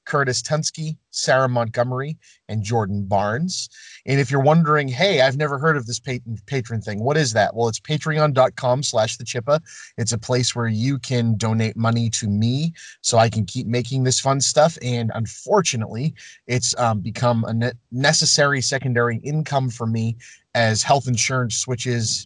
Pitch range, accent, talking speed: 110-135 Hz, American, 165 wpm